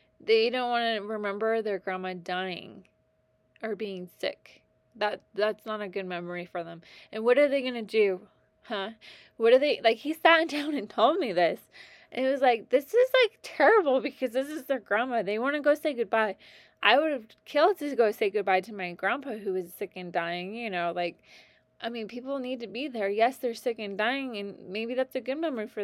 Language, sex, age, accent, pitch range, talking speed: English, female, 20-39, American, 200-260 Hz, 220 wpm